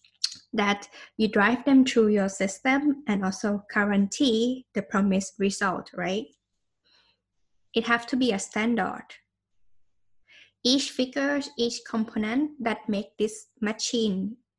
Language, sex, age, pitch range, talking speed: English, female, 10-29, 200-265 Hz, 115 wpm